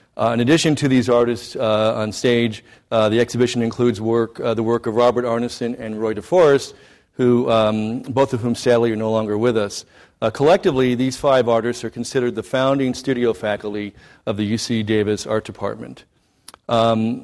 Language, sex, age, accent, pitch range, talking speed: English, male, 50-69, American, 110-130 Hz, 180 wpm